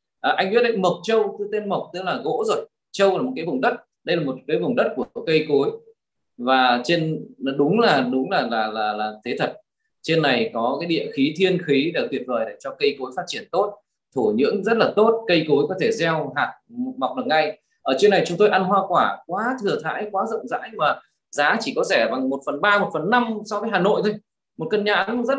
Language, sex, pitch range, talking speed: Vietnamese, male, 155-215 Hz, 250 wpm